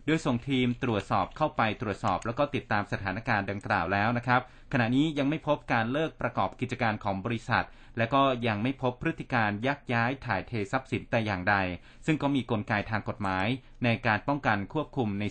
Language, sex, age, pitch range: Thai, male, 30-49, 105-130 Hz